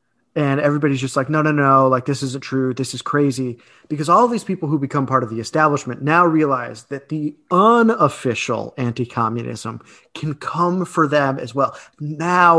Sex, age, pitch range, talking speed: male, 30-49, 125-160 Hz, 180 wpm